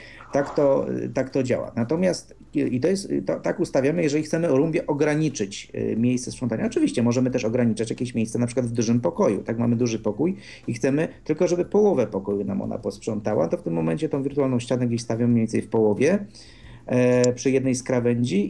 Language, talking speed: Polish, 190 wpm